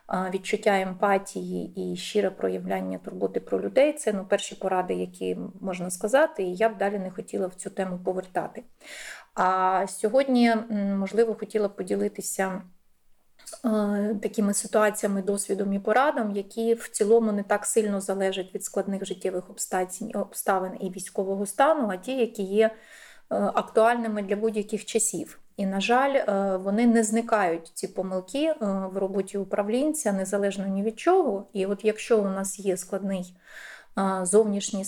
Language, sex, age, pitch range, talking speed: Ukrainian, female, 30-49, 185-215 Hz, 145 wpm